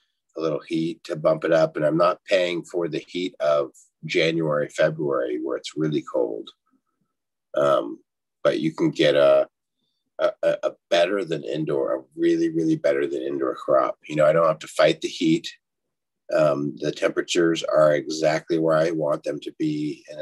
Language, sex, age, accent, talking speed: English, male, 30-49, American, 180 wpm